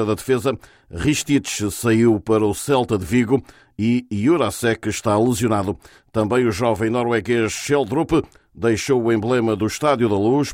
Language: Portuguese